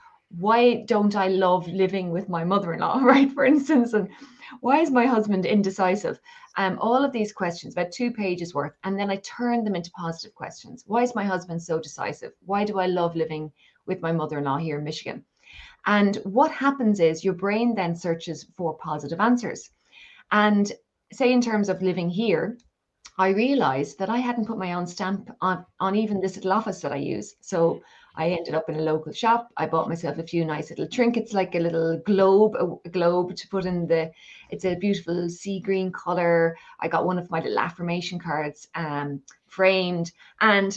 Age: 20-39